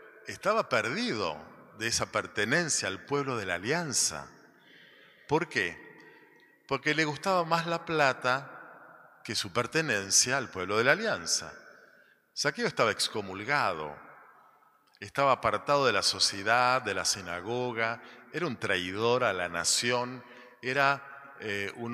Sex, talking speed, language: male, 125 wpm, Spanish